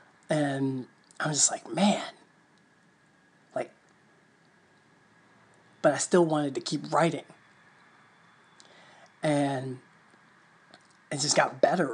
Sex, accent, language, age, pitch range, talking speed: male, American, English, 20-39, 145-180 Hz, 95 wpm